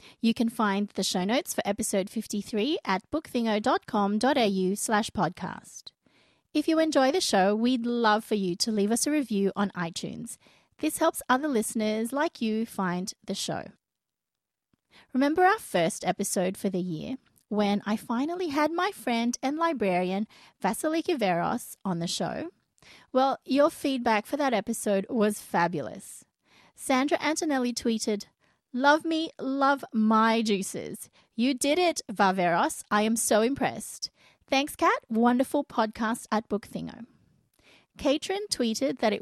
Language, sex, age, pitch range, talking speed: English, female, 30-49, 205-280 Hz, 140 wpm